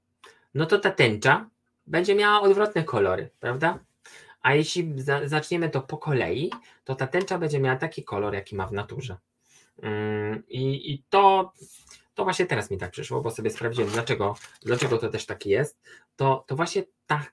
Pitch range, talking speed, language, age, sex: 110-150 Hz, 165 wpm, Polish, 20-39, male